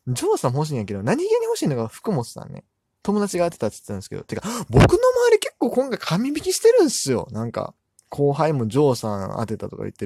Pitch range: 110-175 Hz